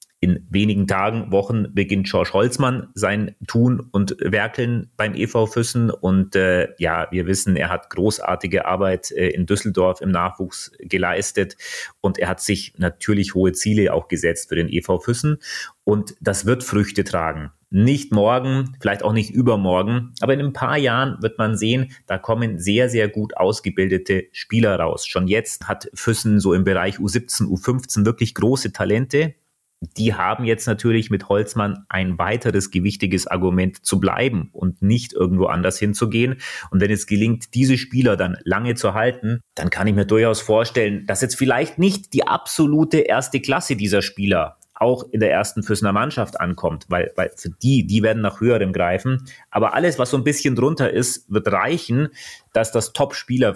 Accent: German